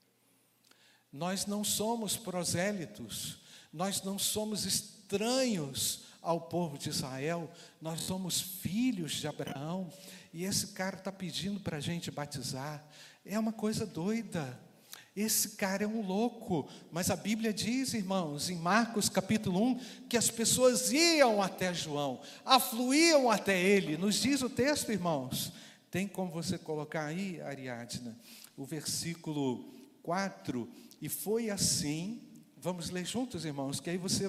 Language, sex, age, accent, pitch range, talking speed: Portuguese, male, 50-69, Brazilian, 165-225 Hz, 135 wpm